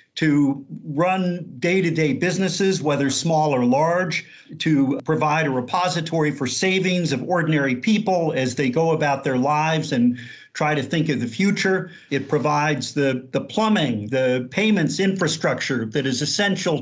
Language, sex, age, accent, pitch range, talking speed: English, male, 50-69, American, 145-180 Hz, 145 wpm